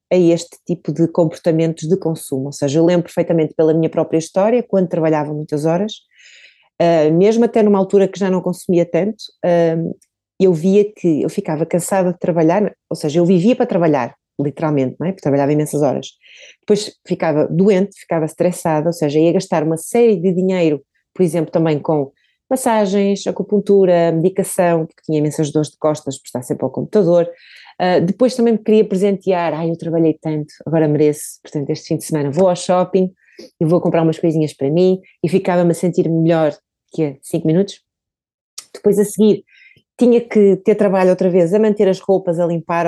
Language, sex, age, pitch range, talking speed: Portuguese, female, 30-49, 160-195 Hz, 185 wpm